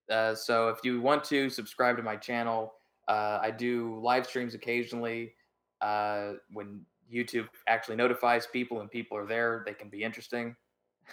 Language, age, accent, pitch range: English, 20-39, American, 110-130 Hz